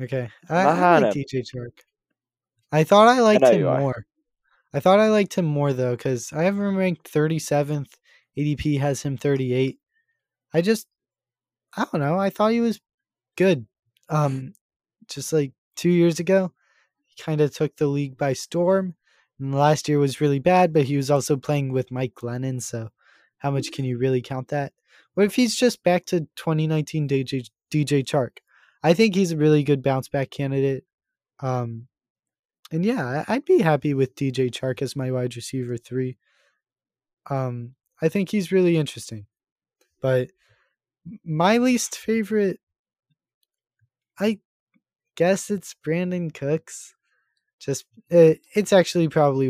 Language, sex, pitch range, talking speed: English, male, 130-180 Hz, 155 wpm